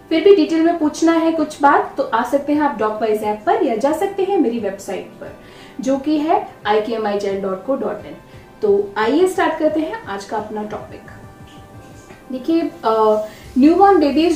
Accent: native